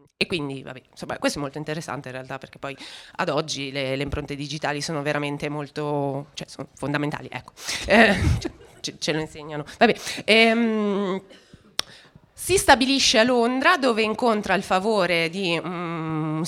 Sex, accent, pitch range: female, native, 165-215 Hz